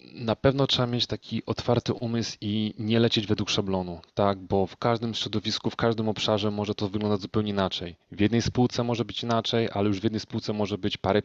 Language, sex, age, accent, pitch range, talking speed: Polish, male, 30-49, native, 105-130 Hz, 210 wpm